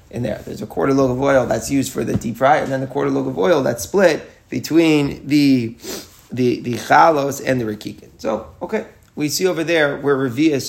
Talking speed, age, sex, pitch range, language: 220 wpm, 30-49, male, 115-145 Hz, English